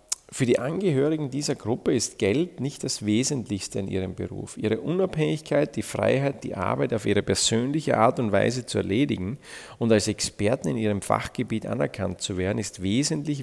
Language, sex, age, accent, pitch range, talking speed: German, male, 40-59, Austrian, 100-130 Hz, 170 wpm